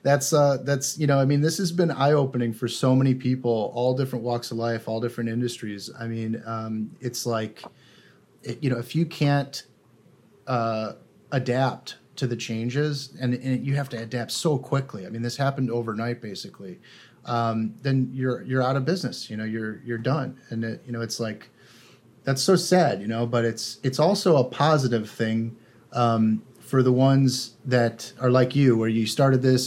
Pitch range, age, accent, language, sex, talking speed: 115-135 Hz, 30-49, American, English, male, 190 wpm